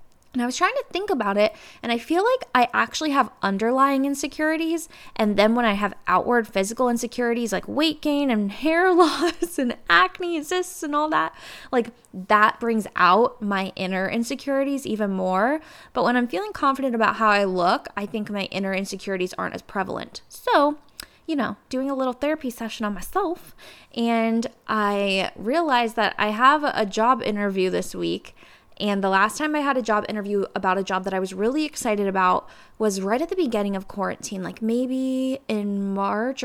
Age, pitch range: 10-29, 210-275 Hz